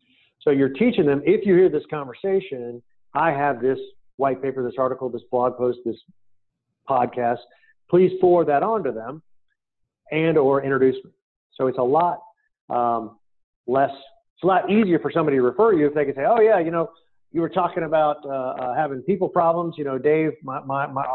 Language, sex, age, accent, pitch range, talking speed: English, male, 40-59, American, 130-175 Hz, 195 wpm